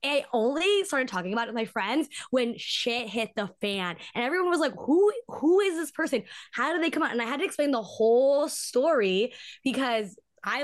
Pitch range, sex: 185-250 Hz, female